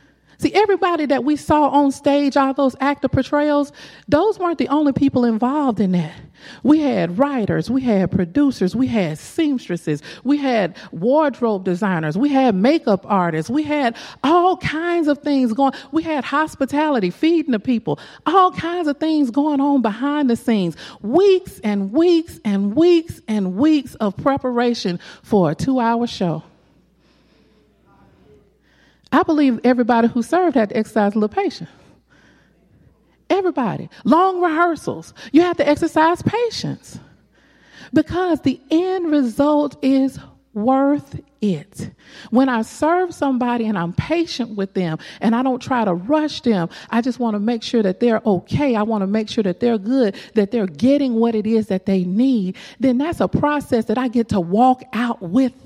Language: English